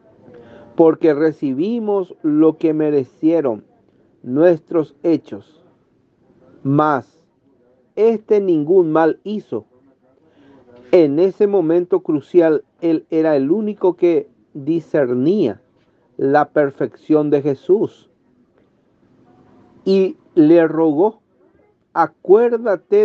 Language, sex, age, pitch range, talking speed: Spanish, male, 40-59, 145-190 Hz, 80 wpm